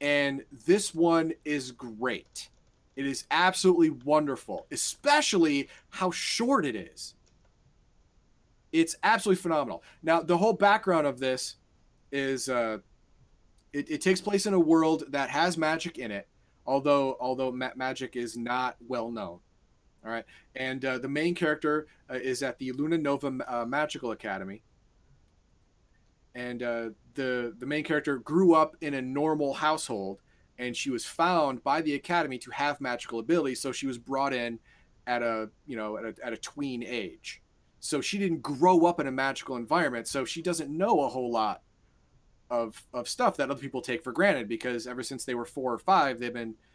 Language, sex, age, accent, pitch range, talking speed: English, male, 30-49, American, 120-155 Hz, 170 wpm